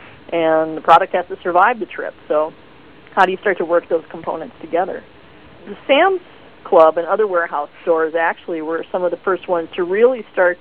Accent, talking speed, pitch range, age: American, 200 wpm, 165-210 Hz, 40-59